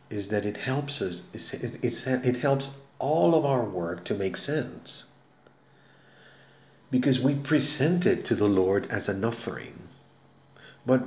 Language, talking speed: Spanish, 135 wpm